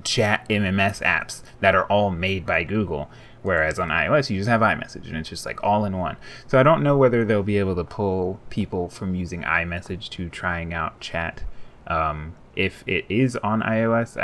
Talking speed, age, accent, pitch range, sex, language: 200 wpm, 20-39, American, 90-110 Hz, male, English